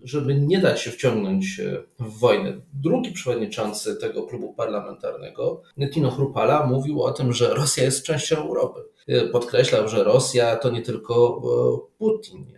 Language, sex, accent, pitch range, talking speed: Polish, male, native, 120-175 Hz, 140 wpm